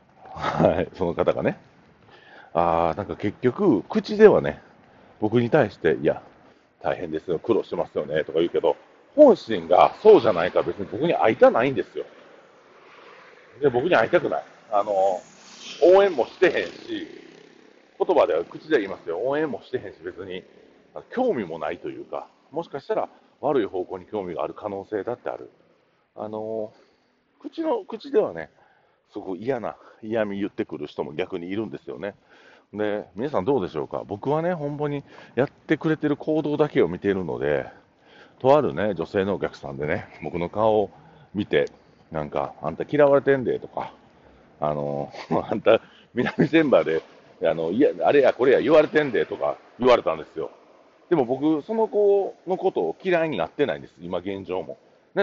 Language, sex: Japanese, male